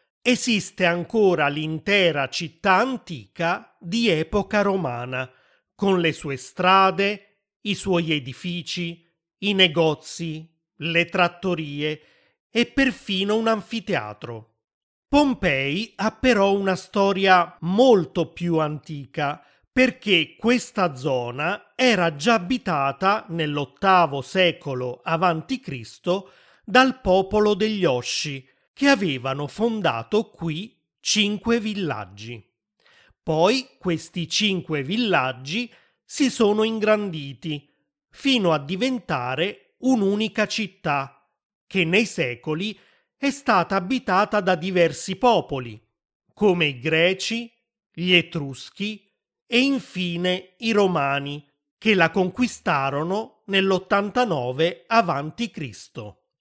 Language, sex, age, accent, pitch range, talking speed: Italian, male, 40-59, native, 155-215 Hz, 90 wpm